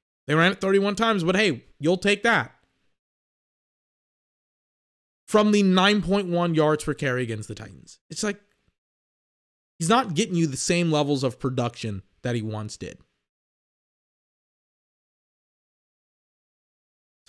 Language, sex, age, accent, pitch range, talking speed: English, male, 20-39, American, 130-190 Hz, 120 wpm